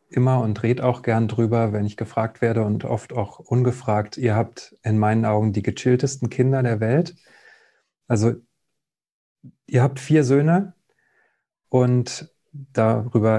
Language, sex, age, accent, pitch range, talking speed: German, male, 30-49, German, 110-130 Hz, 140 wpm